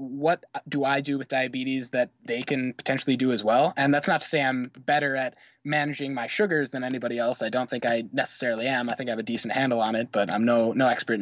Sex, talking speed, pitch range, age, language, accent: male, 250 wpm, 125-150 Hz, 20-39, English, American